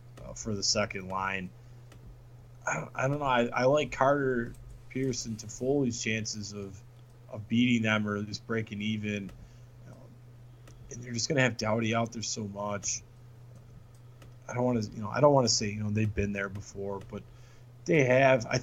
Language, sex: English, male